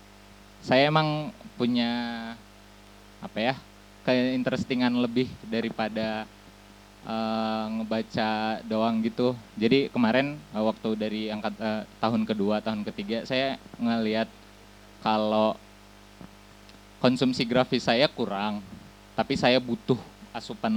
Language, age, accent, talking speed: English, 20-39, Indonesian, 100 wpm